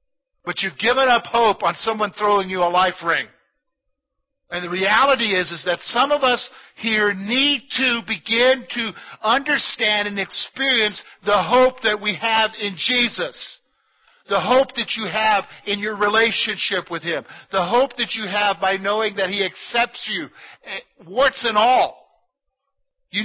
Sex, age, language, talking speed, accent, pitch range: male, 50-69, English, 155 wpm, American, 185-265 Hz